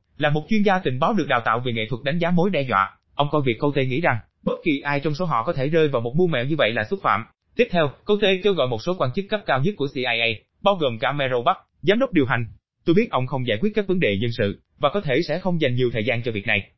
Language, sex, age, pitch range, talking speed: Vietnamese, male, 20-39, 125-180 Hz, 320 wpm